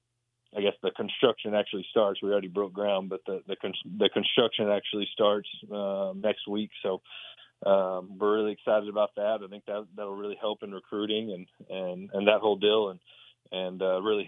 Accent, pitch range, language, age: American, 95-105 Hz, English, 30-49